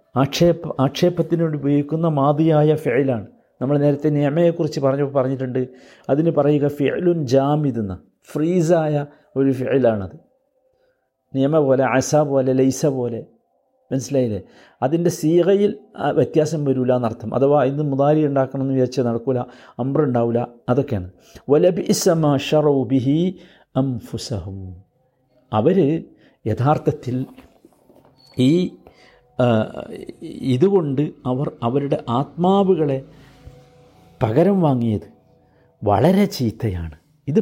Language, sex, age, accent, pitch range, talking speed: Malayalam, male, 50-69, native, 125-155 Hz, 80 wpm